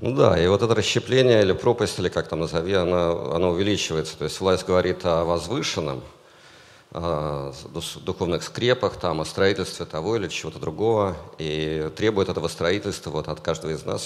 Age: 50-69